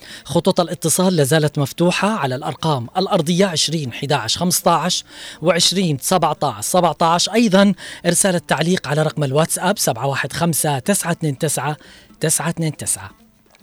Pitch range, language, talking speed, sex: 145-180 Hz, Arabic, 100 wpm, female